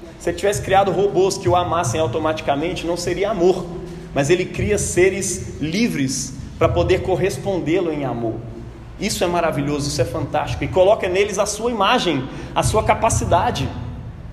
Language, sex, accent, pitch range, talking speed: Portuguese, male, Brazilian, 115-195 Hz, 155 wpm